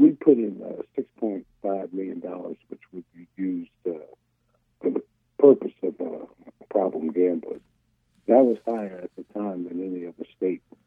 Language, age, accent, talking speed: English, 60-79, American, 155 wpm